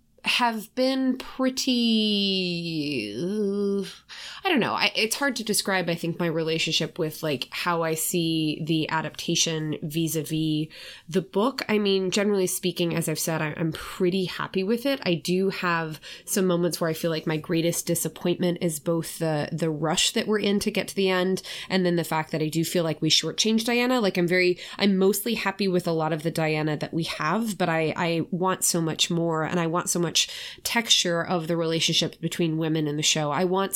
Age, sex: 20-39, female